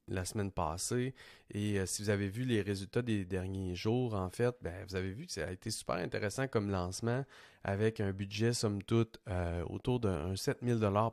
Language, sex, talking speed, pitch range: French, male, 200 wpm, 95-115 Hz